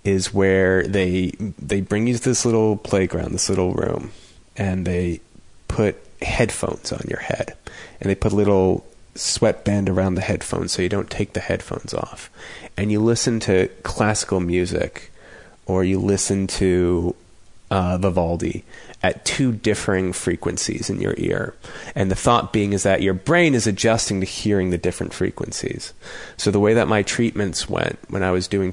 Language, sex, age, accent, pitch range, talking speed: English, male, 30-49, American, 90-105 Hz, 170 wpm